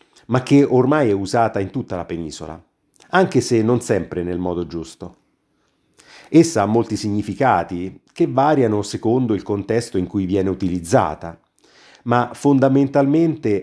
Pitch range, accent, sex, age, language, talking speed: 95-120 Hz, native, male, 50-69, Italian, 135 wpm